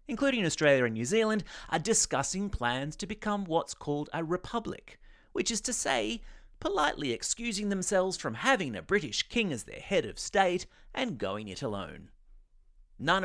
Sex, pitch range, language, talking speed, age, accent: male, 135-205 Hz, English, 165 wpm, 30-49, Australian